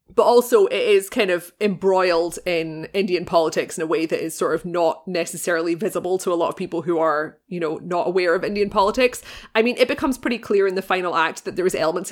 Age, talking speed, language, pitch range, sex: 20-39, 240 wpm, English, 170-200 Hz, female